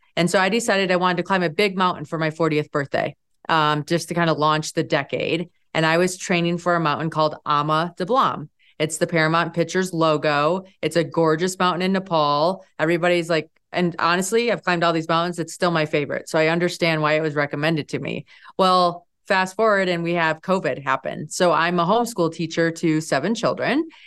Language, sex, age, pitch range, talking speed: English, female, 30-49, 165-225 Hz, 205 wpm